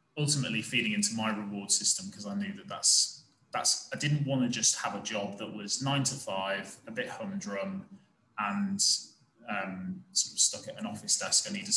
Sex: male